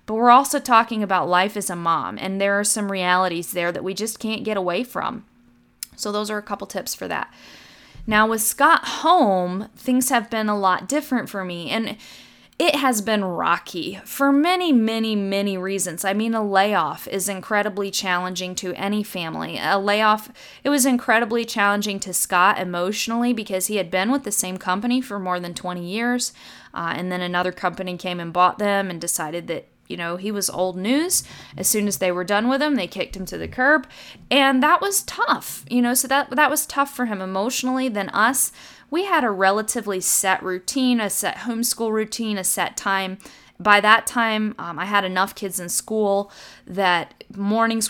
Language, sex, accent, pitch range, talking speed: English, female, American, 185-230 Hz, 195 wpm